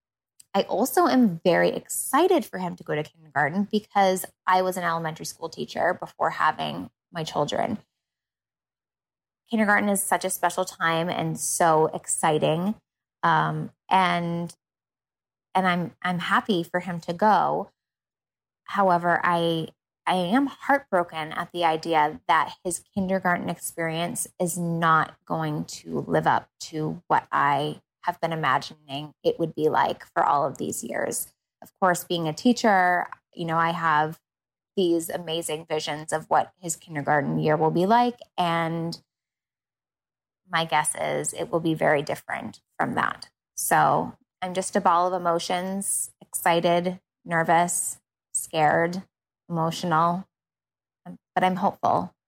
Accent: American